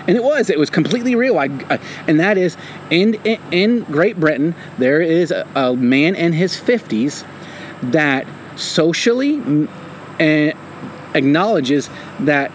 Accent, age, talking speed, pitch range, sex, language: American, 30-49, 130 wpm, 150-205 Hz, male, English